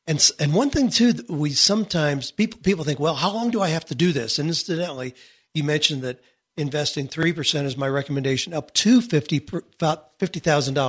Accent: American